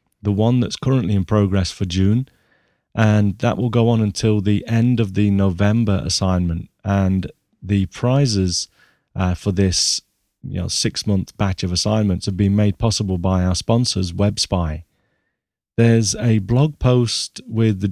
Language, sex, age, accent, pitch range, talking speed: English, male, 30-49, British, 95-110 Hz, 145 wpm